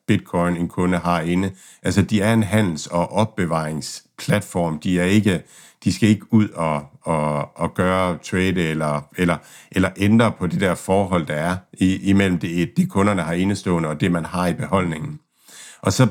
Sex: male